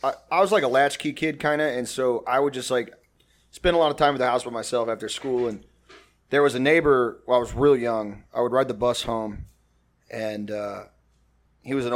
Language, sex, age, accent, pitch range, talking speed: English, male, 30-49, American, 115-170 Hz, 235 wpm